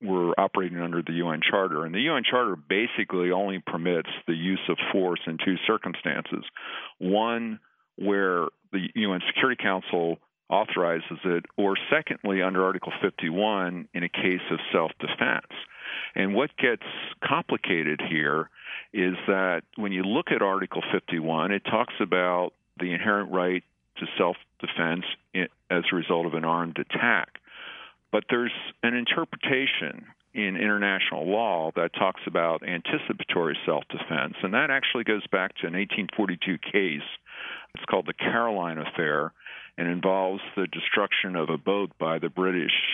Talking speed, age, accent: 145 wpm, 50-69, American